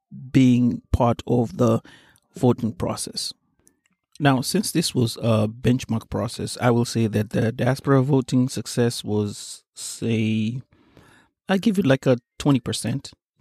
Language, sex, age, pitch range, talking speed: Swahili, male, 30-49, 110-125 Hz, 130 wpm